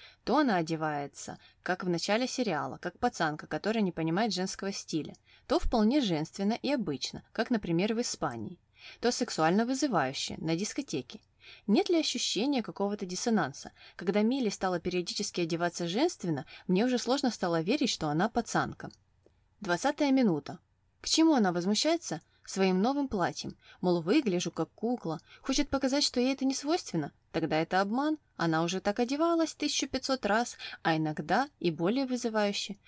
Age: 20-39